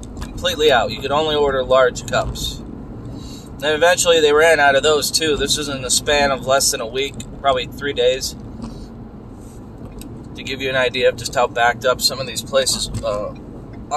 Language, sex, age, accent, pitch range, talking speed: English, male, 30-49, American, 115-140 Hz, 185 wpm